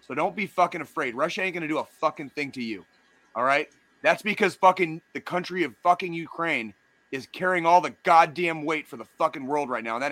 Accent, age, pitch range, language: American, 30-49, 135-175 Hz, English